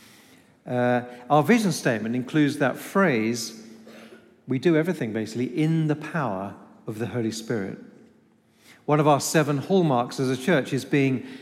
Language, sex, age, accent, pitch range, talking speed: English, male, 50-69, British, 125-160 Hz, 145 wpm